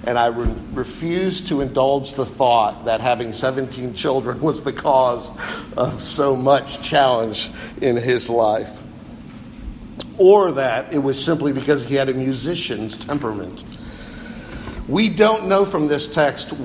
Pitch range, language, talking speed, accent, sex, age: 130-185 Hz, English, 135 wpm, American, male, 50-69